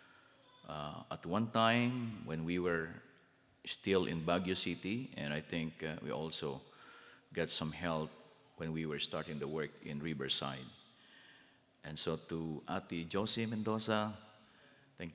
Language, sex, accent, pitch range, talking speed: English, male, Filipino, 80-100 Hz, 140 wpm